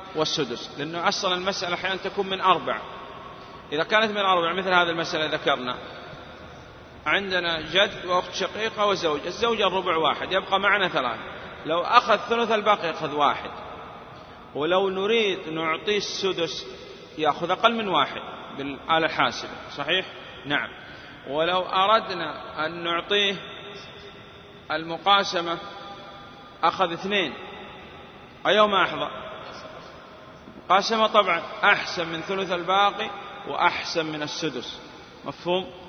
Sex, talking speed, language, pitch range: male, 105 wpm, Arabic, 160-200 Hz